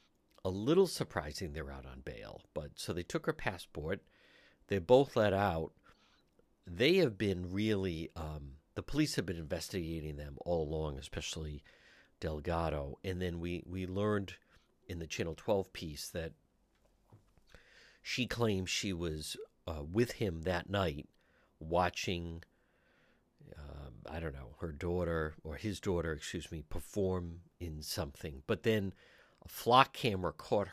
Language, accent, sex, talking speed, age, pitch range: English, American, male, 145 wpm, 50-69, 80-105 Hz